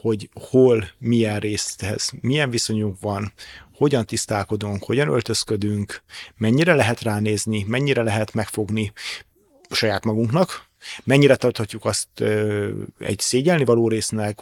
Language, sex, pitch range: Hungarian, male, 105-120 Hz